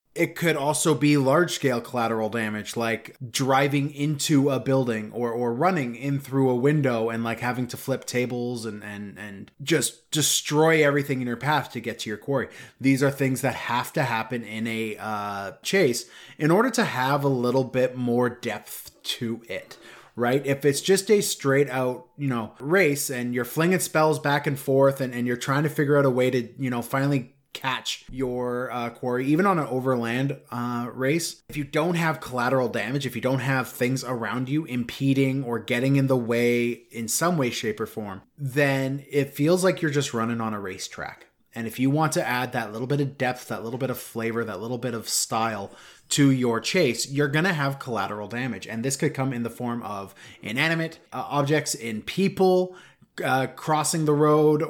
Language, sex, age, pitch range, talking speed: English, male, 20-39, 120-145 Hz, 200 wpm